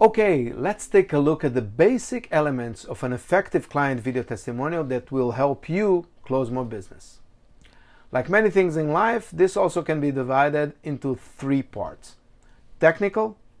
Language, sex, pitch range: English, male, 120-175 Hz